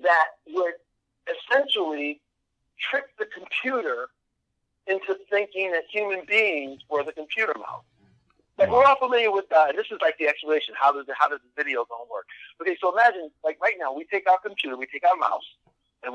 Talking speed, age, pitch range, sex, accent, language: 180 wpm, 50-69, 145-200 Hz, male, American, English